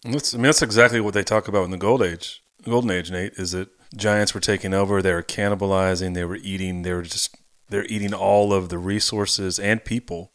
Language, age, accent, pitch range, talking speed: English, 30-49, American, 95-120 Hz, 225 wpm